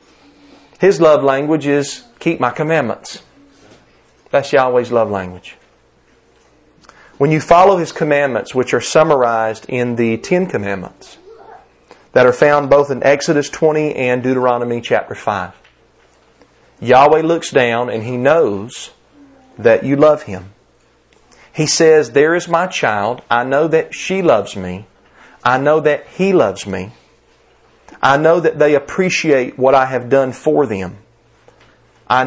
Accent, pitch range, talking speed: American, 115-155 Hz, 140 wpm